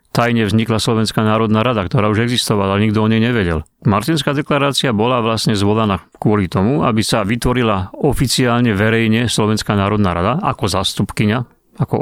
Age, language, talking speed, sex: 40-59, Slovak, 155 wpm, male